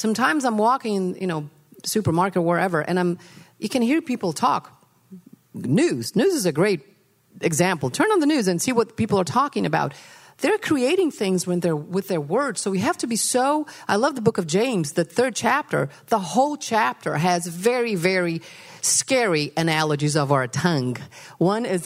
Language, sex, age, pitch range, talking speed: English, female, 40-59, 175-245 Hz, 185 wpm